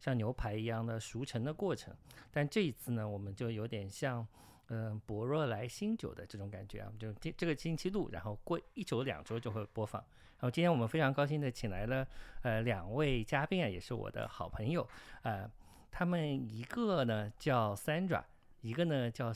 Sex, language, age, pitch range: male, Chinese, 50-69, 110-160 Hz